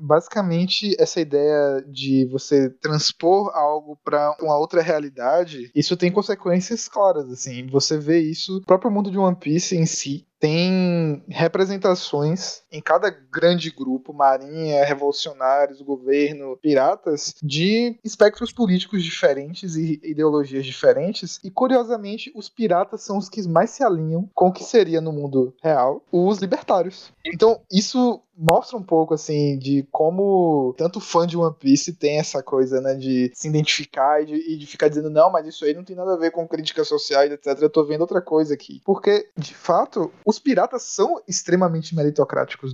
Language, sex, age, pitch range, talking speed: Portuguese, male, 20-39, 150-190 Hz, 160 wpm